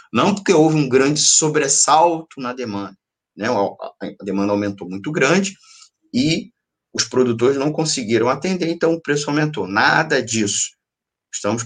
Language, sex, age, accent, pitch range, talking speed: Portuguese, male, 20-39, Brazilian, 105-145 Hz, 140 wpm